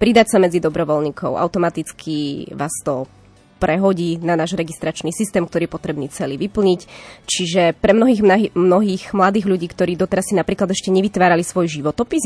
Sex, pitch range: female, 175-205 Hz